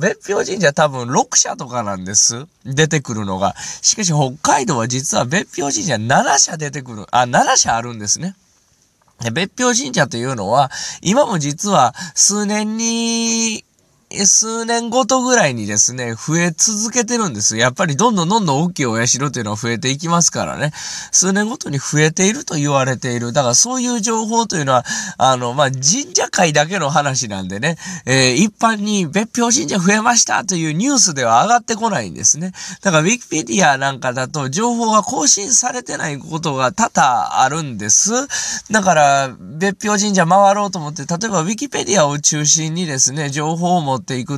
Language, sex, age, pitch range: Japanese, male, 20-39, 130-215 Hz